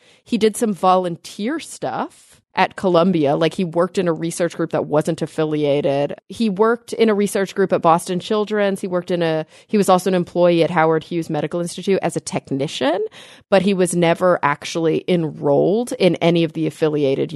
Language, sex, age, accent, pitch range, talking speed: English, female, 30-49, American, 155-195 Hz, 185 wpm